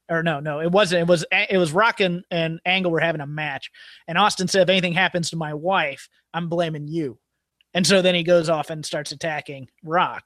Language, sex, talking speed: English, male, 230 wpm